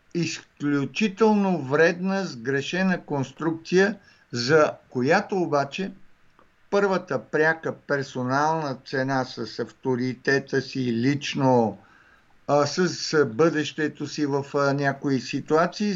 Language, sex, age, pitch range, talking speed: English, male, 60-79, 130-175 Hz, 80 wpm